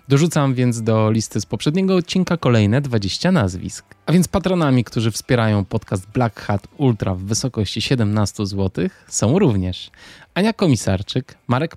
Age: 20-39